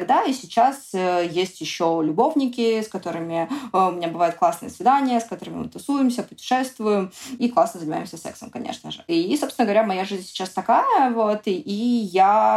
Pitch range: 190-250 Hz